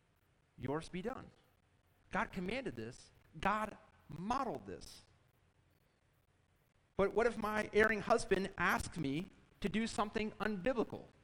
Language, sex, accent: English, male, American